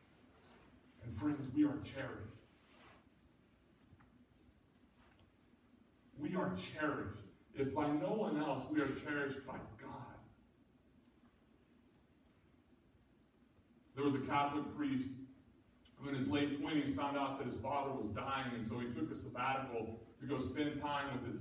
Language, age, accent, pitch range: English, 40-59, American, 120-150 Hz